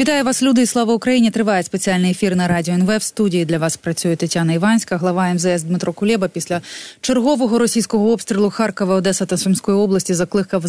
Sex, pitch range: female, 175-210 Hz